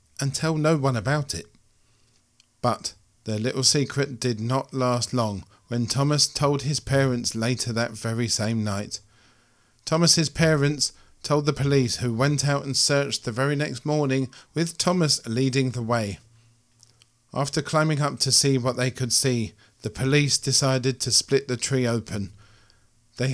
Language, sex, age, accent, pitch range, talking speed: English, male, 40-59, British, 115-135 Hz, 155 wpm